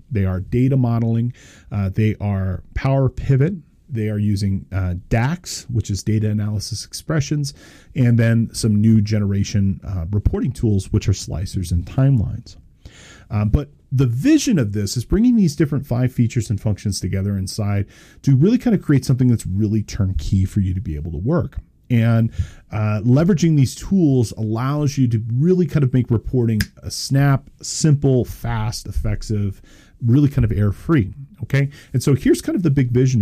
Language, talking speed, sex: English, 175 wpm, male